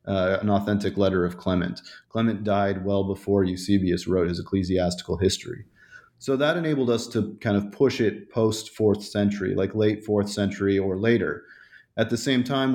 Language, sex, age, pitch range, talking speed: English, male, 30-49, 100-115 Hz, 170 wpm